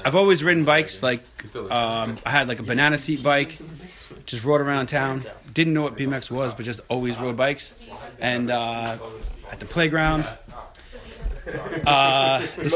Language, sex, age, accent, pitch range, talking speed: English, male, 30-49, American, 125-160 Hz, 155 wpm